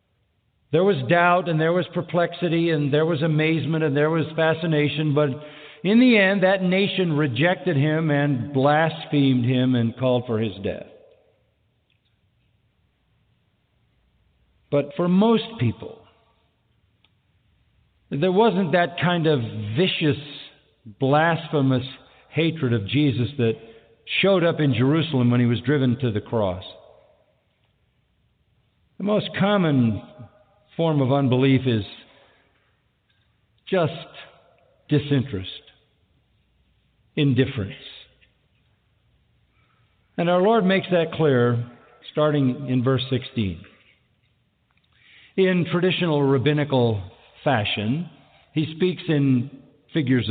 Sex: male